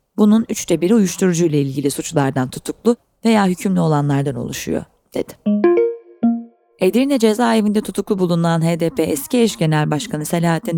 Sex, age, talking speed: female, 30-49, 120 wpm